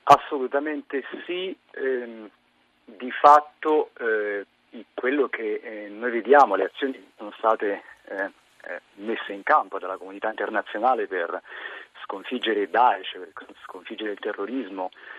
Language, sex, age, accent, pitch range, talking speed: Italian, male, 40-59, native, 100-135 Hz, 125 wpm